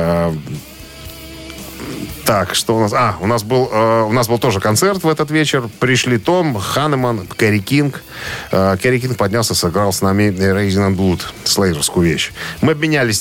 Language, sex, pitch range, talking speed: Russian, male, 95-125 Hz, 155 wpm